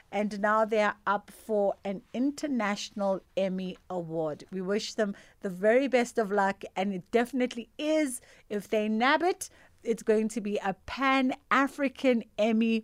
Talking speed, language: 155 wpm, English